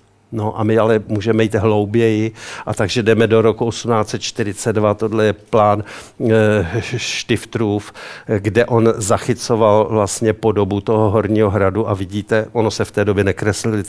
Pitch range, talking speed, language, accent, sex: 100-110 Hz, 145 wpm, Czech, native, male